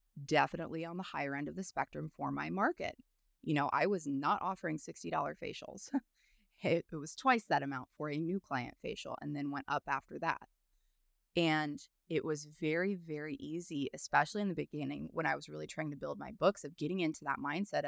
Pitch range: 145-200 Hz